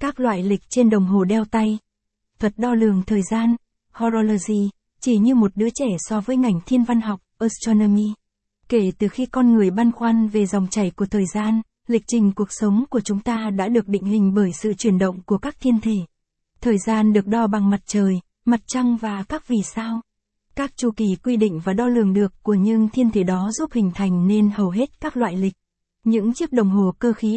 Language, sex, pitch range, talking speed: Vietnamese, female, 200-235 Hz, 220 wpm